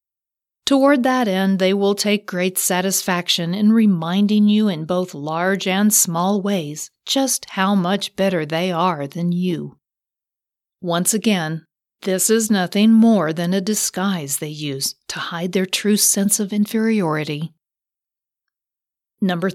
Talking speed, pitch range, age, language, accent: 135 wpm, 170-205 Hz, 40-59, English, American